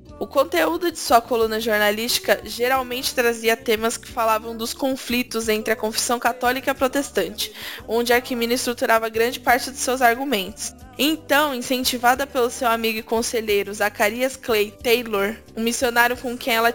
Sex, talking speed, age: female, 155 wpm, 10-29